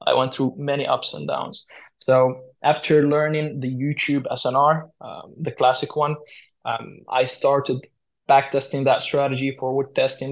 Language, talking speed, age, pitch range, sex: English, 145 wpm, 20-39, 135-155 Hz, male